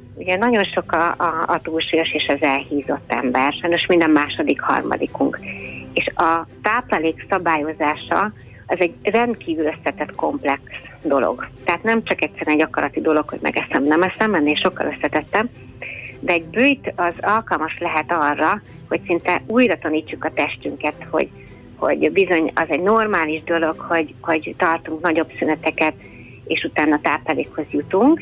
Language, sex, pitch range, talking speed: Hungarian, female, 155-180 Hz, 140 wpm